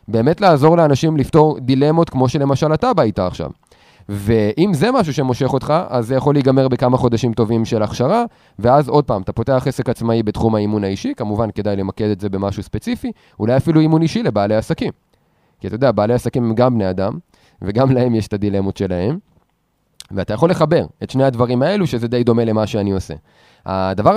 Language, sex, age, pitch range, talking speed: Hebrew, male, 30-49, 105-145 Hz, 190 wpm